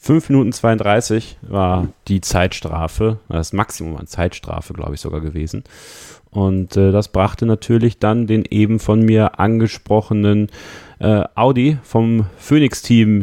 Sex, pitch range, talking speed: male, 100-125 Hz, 130 wpm